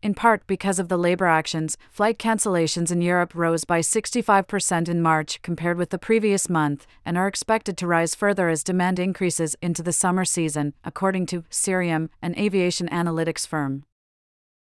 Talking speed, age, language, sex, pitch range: 170 wpm, 40-59, English, female, 165-200 Hz